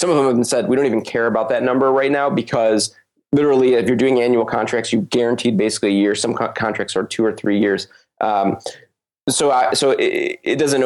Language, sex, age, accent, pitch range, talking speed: English, male, 20-39, American, 110-140 Hz, 220 wpm